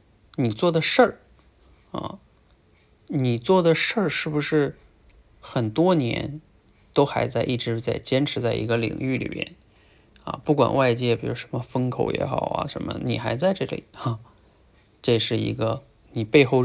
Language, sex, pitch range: Chinese, male, 115-155 Hz